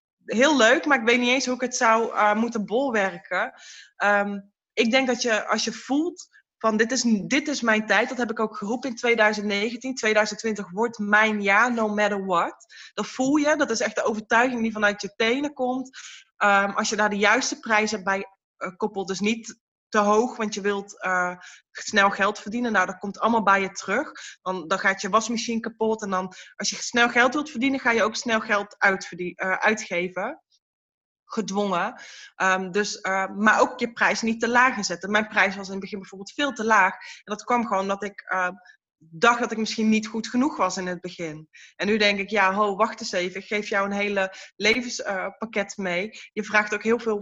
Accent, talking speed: Dutch, 205 wpm